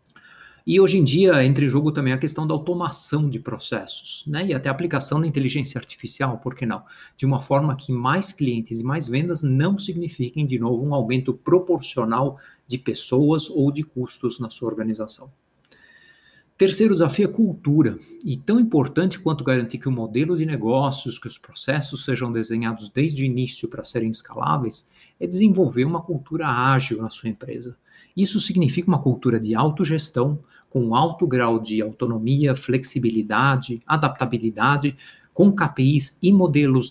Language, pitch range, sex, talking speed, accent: Portuguese, 125-160 Hz, male, 160 wpm, Brazilian